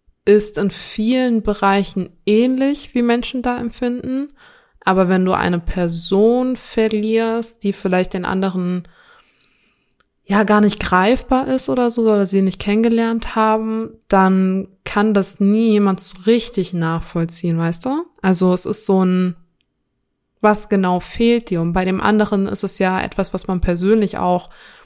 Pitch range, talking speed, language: 175-210 Hz, 150 wpm, German